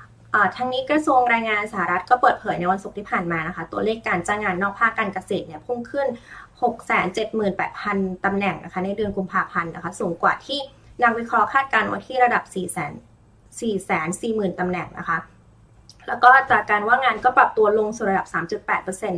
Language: Thai